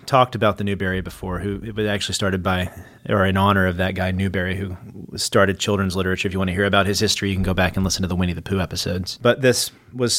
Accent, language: American, English